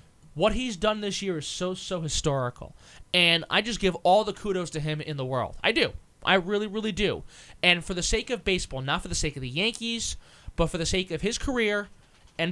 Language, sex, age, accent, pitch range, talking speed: English, male, 20-39, American, 145-205 Hz, 230 wpm